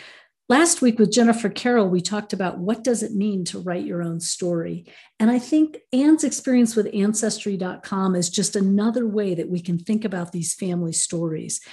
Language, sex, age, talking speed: English, female, 50-69, 185 wpm